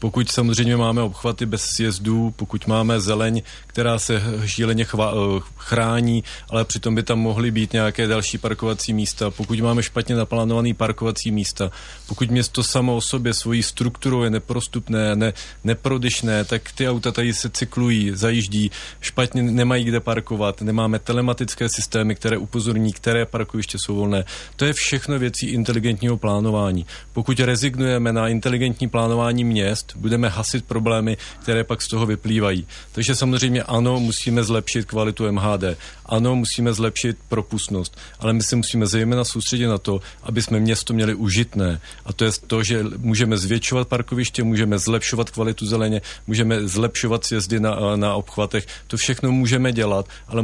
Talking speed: 150 wpm